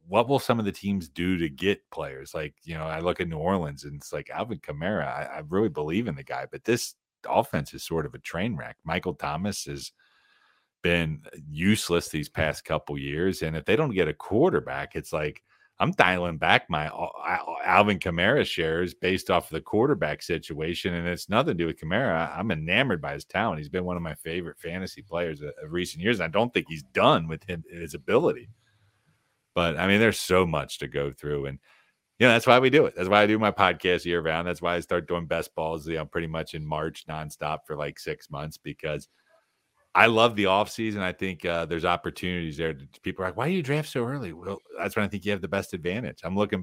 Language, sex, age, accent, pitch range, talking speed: English, male, 40-59, American, 80-100 Hz, 225 wpm